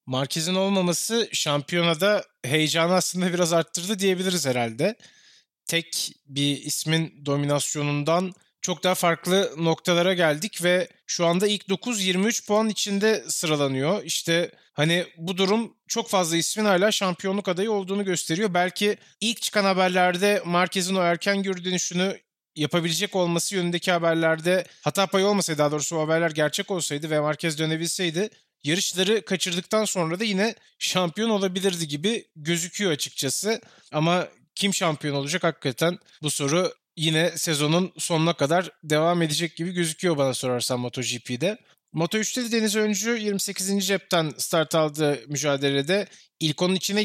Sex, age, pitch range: male, 30-49, 155-195 Hz